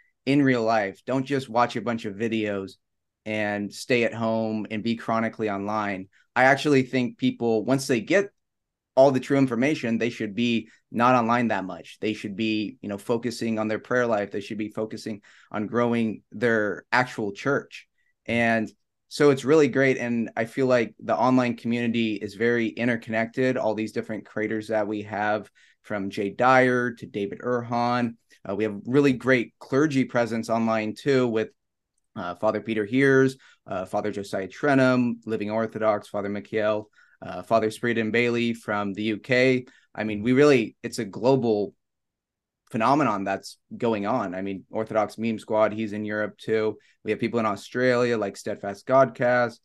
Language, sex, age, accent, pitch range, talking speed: English, male, 20-39, American, 105-125 Hz, 170 wpm